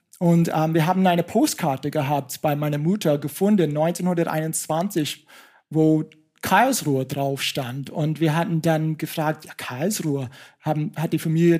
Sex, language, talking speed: male, German, 140 wpm